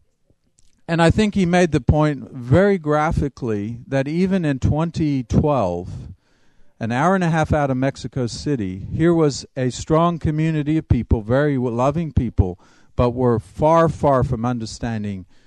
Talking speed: 145 wpm